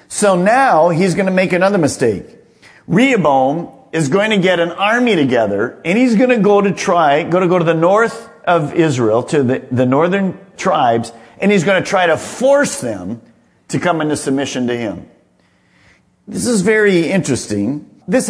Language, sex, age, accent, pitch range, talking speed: English, male, 50-69, American, 150-220 Hz, 180 wpm